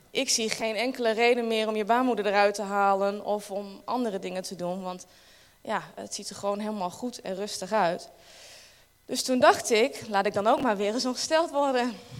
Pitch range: 195-235 Hz